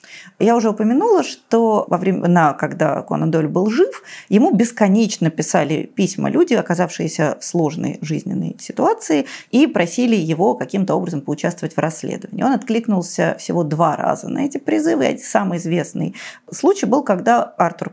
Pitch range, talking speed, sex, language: 165-230 Hz, 145 wpm, female, Russian